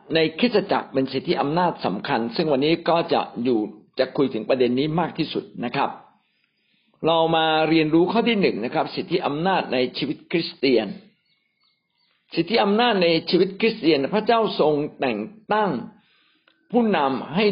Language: Thai